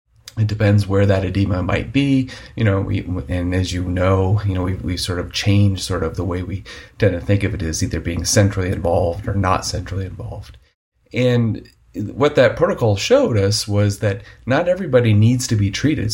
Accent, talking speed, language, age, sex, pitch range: American, 195 wpm, English, 30-49, male, 95-110 Hz